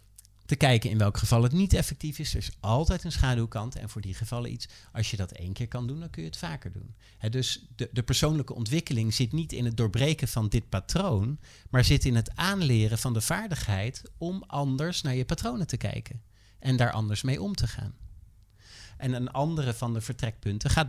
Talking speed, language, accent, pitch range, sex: 215 wpm, Dutch, Dutch, 105-135 Hz, male